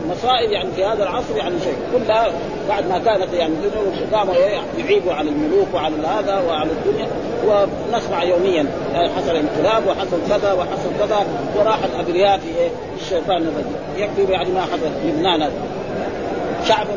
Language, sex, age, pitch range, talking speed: Arabic, male, 40-59, 175-225 Hz, 140 wpm